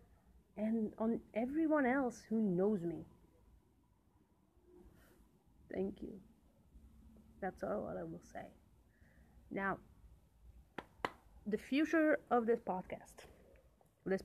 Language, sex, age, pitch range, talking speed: English, female, 30-49, 170-215 Hz, 90 wpm